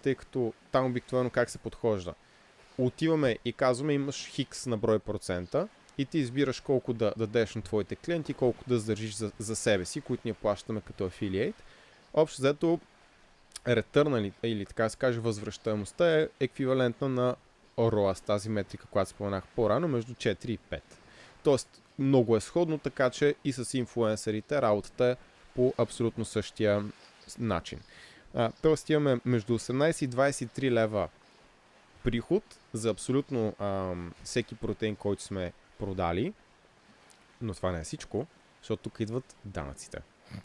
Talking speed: 145 wpm